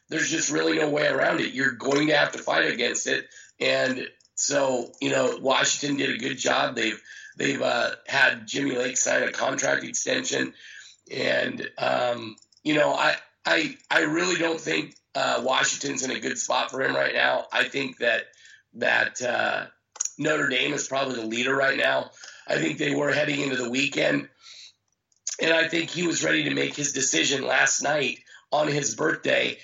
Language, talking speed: English, 180 wpm